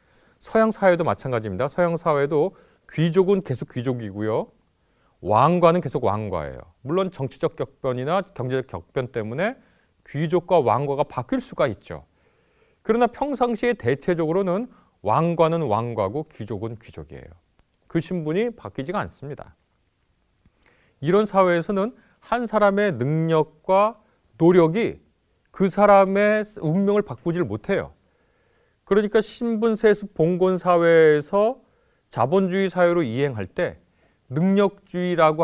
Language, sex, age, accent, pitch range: Korean, male, 30-49, native, 125-200 Hz